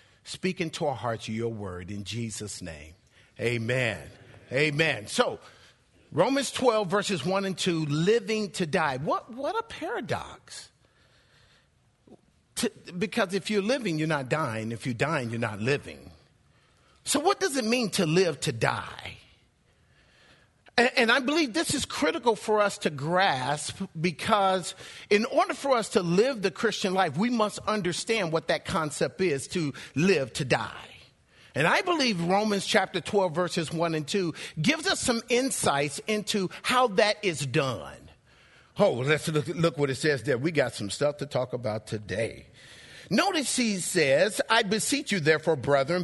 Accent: American